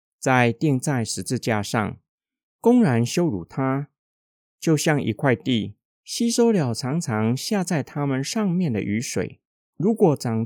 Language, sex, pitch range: Chinese, male, 115-180 Hz